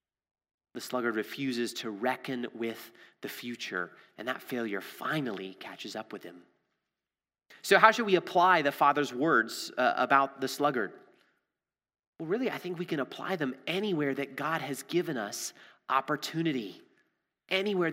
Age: 30-49